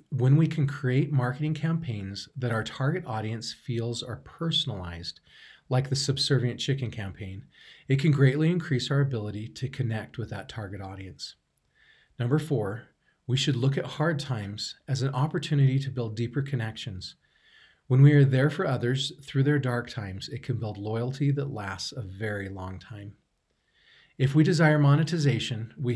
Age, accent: 40-59, American